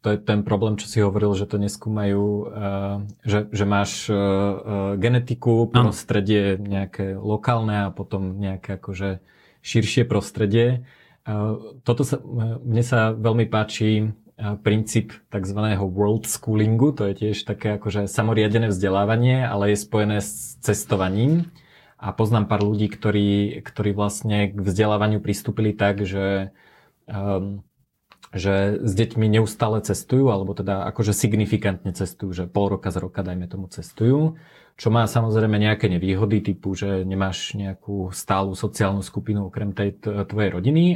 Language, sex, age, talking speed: Slovak, male, 30-49, 135 wpm